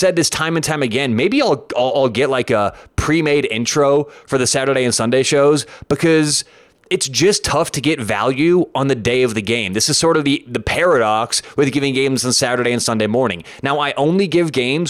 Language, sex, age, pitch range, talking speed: English, male, 20-39, 115-145 Hz, 220 wpm